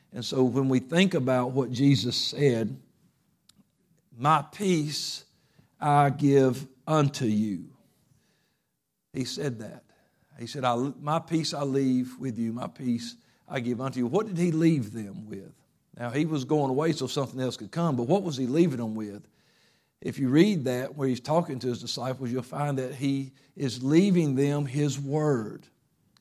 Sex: male